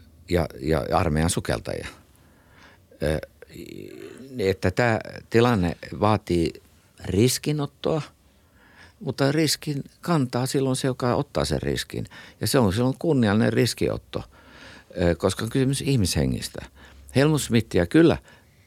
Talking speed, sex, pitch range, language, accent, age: 95 wpm, male, 75-105 Hz, Finnish, native, 60-79